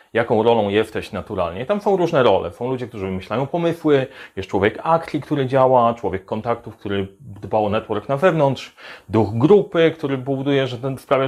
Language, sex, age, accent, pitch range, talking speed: Polish, male, 30-49, native, 115-145 Hz, 175 wpm